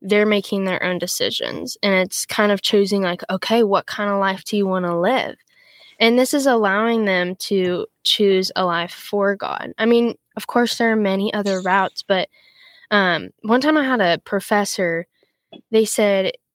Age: 10-29